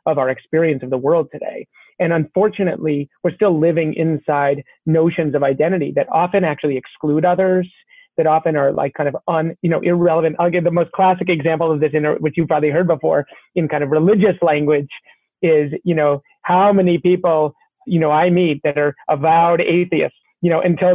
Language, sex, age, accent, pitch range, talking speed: English, male, 30-49, American, 155-185 Hz, 190 wpm